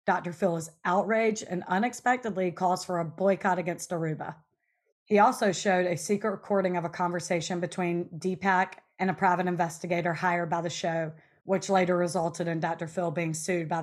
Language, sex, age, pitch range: English, female, 30-49, 165-185 Hz